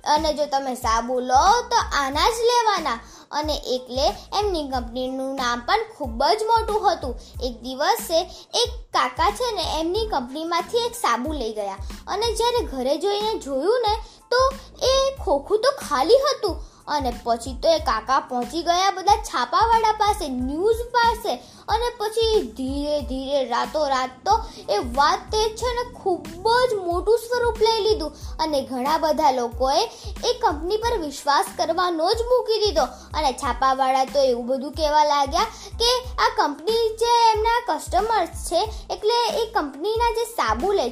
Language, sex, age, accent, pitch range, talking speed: Gujarati, female, 20-39, native, 275-440 Hz, 110 wpm